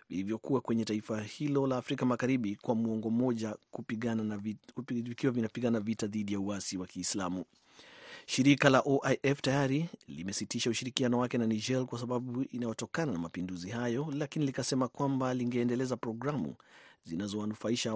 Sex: male